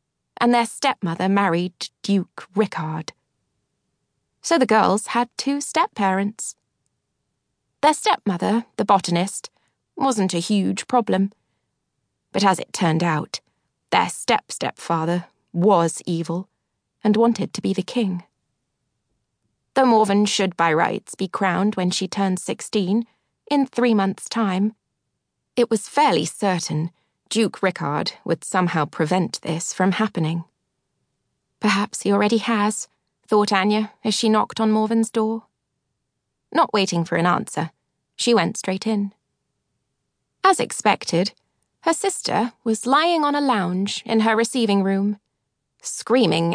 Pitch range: 170-220 Hz